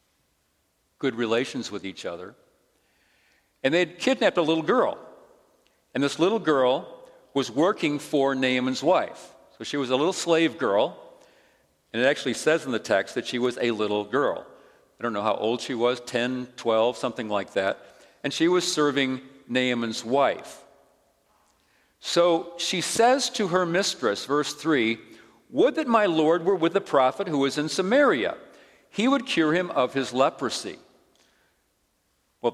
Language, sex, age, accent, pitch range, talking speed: English, male, 50-69, American, 120-170 Hz, 160 wpm